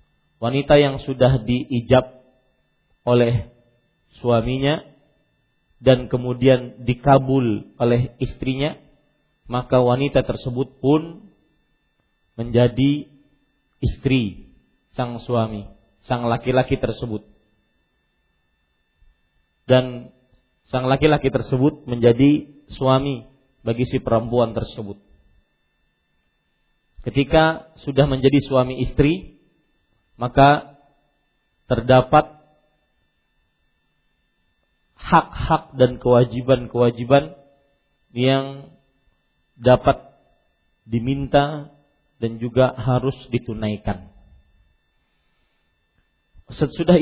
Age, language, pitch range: 40-59, Malay, 115-140 Hz